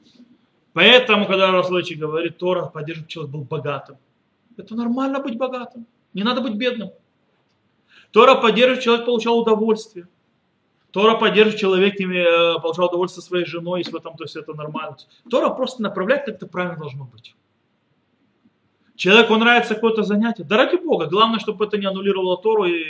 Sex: male